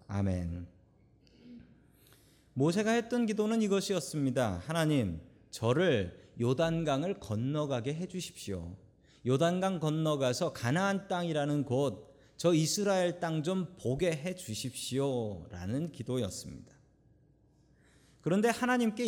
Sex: male